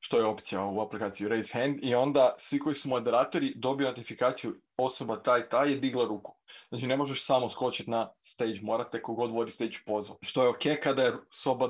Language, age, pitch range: Croatian, 20-39, 115-135 Hz